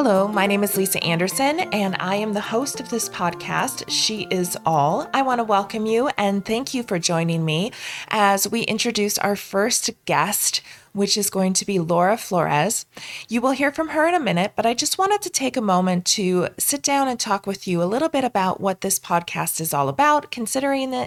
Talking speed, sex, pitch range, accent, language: 215 wpm, female, 180-235 Hz, American, English